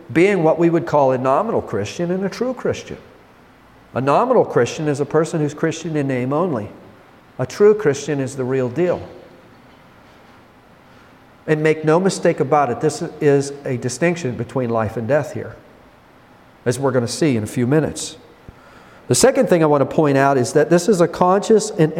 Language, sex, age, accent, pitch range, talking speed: English, male, 50-69, American, 130-165 Hz, 190 wpm